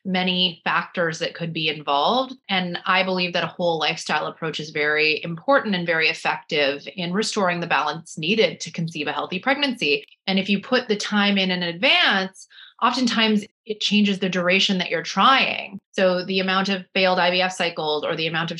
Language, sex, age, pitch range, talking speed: English, female, 30-49, 175-205 Hz, 185 wpm